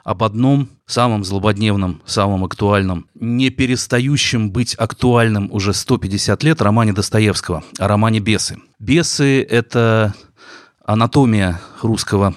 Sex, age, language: male, 30-49, Russian